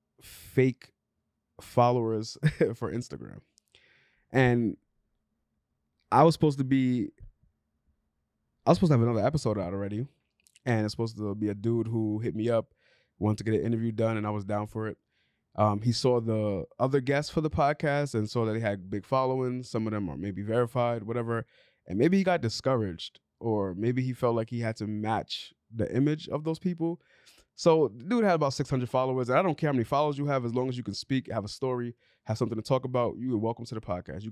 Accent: American